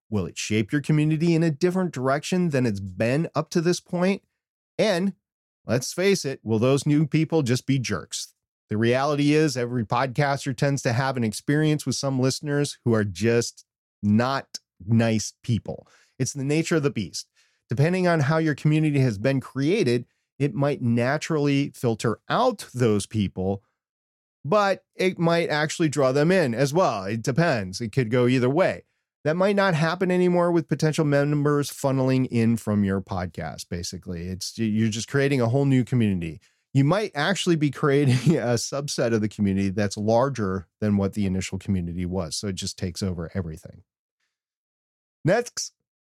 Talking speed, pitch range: 170 wpm, 110-155 Hz